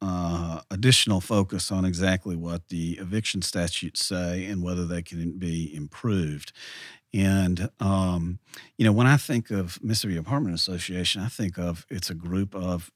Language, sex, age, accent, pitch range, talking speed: English, male, 40-59, American, 85-105 Hz, 160 wpm